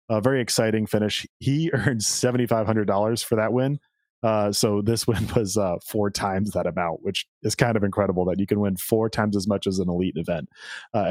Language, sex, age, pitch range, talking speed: English, male, 30-49, 100-120 Hz, 205 wpm